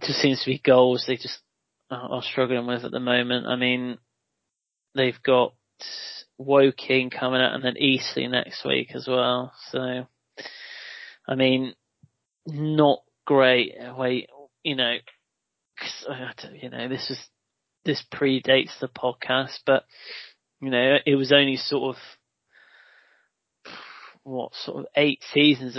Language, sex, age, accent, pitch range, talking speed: English, male, 20-39, British, 130-145 Hz, 130 wpm